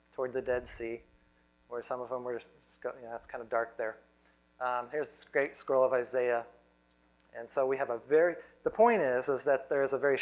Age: 30-49